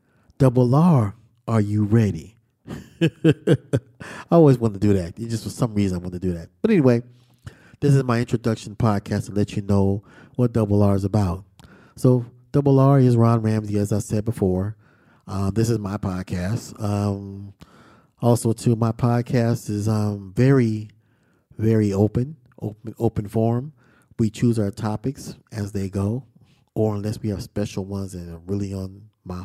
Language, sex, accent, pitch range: English, male, American, 100-120 Hz